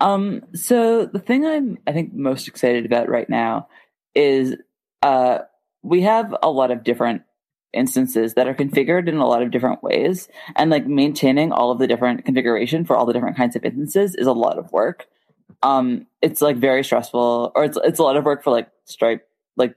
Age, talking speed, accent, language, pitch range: 20-39, 200 wpm, American, English, 120-165 Hz